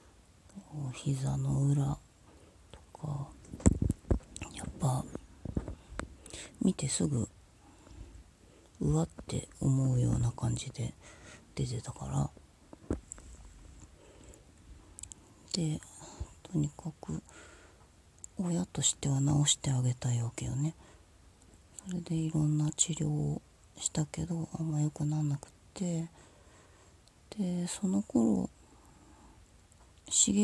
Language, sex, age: Japanese, female, 40-59